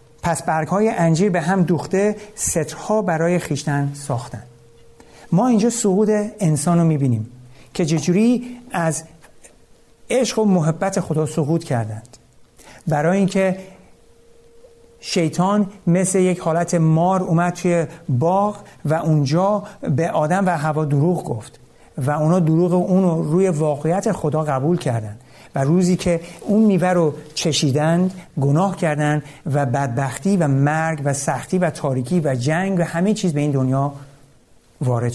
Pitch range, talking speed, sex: 140-180 Hz, 135 wpm, male